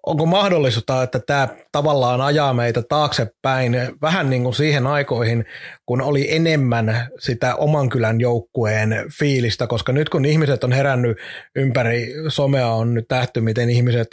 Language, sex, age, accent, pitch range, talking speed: Finnish, male, 30-49, native, 125-145 Hz, 145 wpm